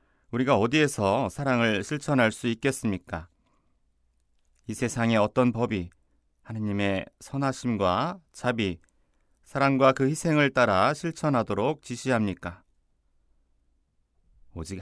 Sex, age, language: male, 30-49, Korean